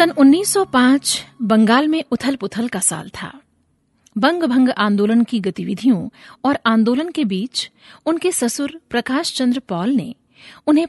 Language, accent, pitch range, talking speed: Hindi, native, 215-280 Hz, 140 wpm